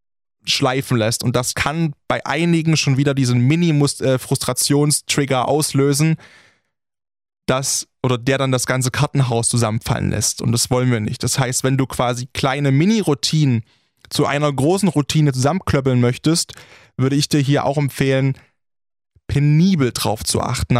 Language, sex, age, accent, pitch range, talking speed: German, male, 20-39, German, 120-140 Hz, 150 wpm